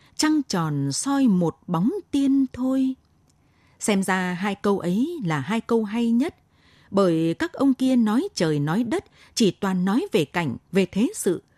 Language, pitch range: Vietnamese, 170-255 Hz